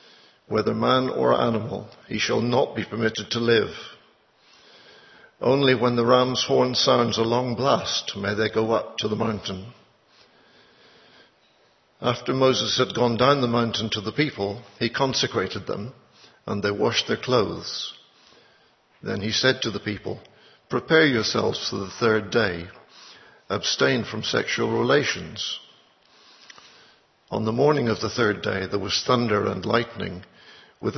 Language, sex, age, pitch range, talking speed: English, male, 60-79, 105-125 Hz, 145 wpm